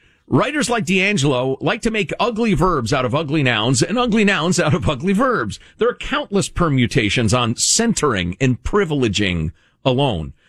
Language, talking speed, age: English, 160 wpm, 50-69